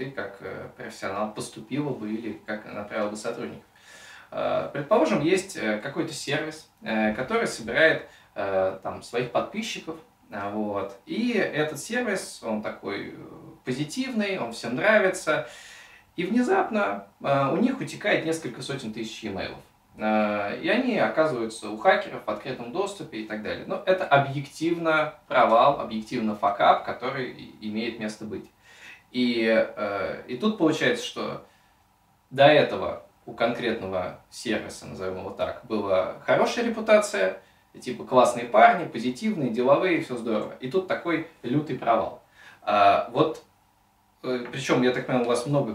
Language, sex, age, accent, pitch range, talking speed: Russian, male, 20-39, native, 110-160 Hz, 125 wpm